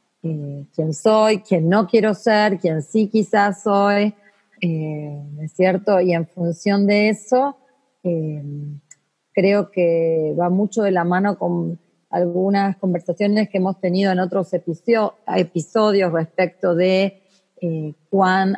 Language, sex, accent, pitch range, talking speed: Spanish, female, Argentinian, 170-200 Hz, 125 wpm